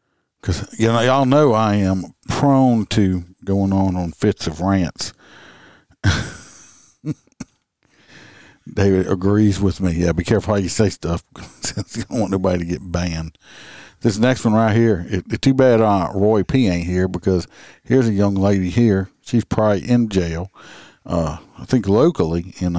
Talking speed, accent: 170 wpm, American